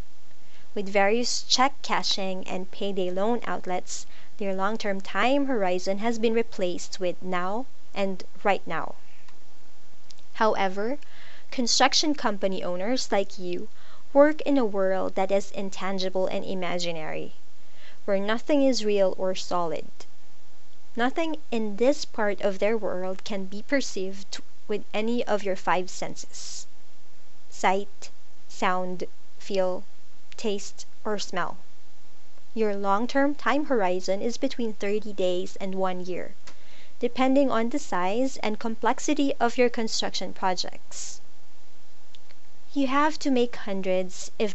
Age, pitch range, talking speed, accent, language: 20-39, 190-245 Hz, 120 wpm, Filipino, English